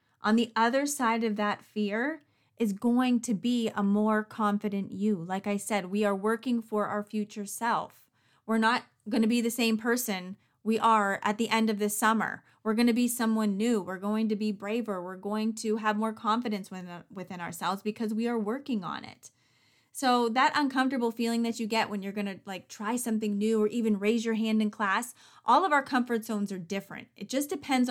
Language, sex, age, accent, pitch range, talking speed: English, female, 30-49, American, 200-230 Hz, 210 wpm